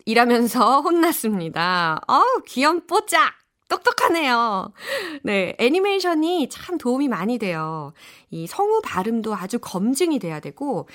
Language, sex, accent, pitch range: Korean, female, native, 190-300 Hz